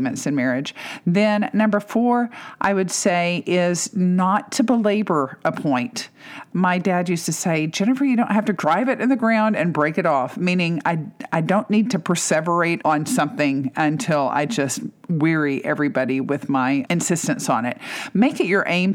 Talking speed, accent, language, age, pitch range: 175 wpm, American, English, 50-69, 160-225 Hz